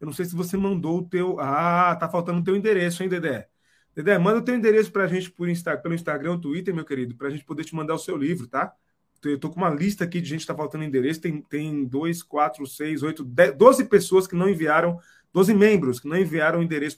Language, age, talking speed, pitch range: Portuguese, 20-39, 245 wpm, 150-190 Hz